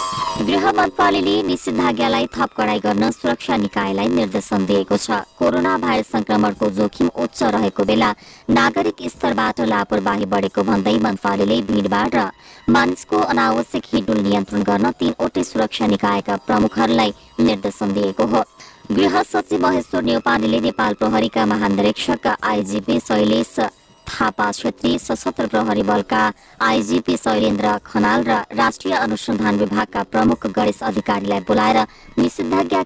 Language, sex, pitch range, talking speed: English, male, 100-110 Hz, 110 wpm